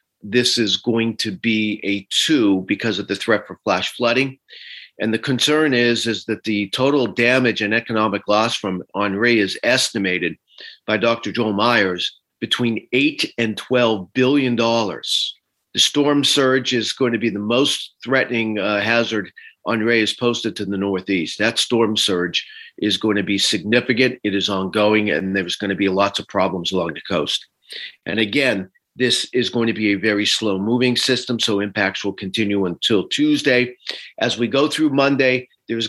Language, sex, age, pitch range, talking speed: English, male, 50-69, 105-125 Hz, 175 wpm